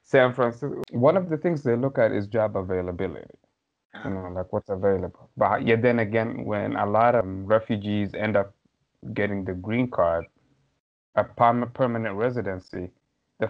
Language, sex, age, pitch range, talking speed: English, male, 20-39, 95-115 Hz, 160 wpm